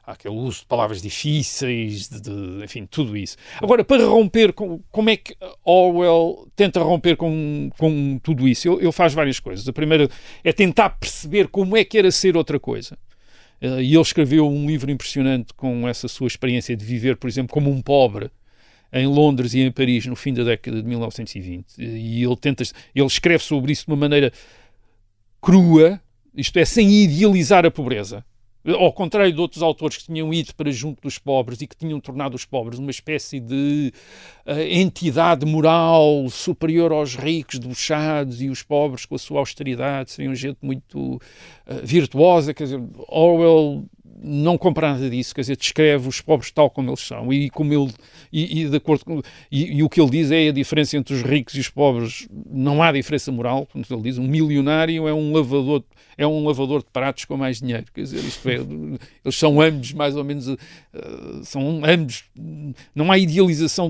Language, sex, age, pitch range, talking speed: Portuguese, male, 50-69, 125-160 Hz, 180 wpm